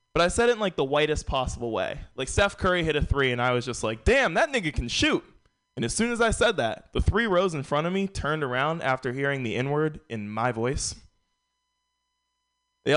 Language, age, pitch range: English, 20-39, 115-165 Hz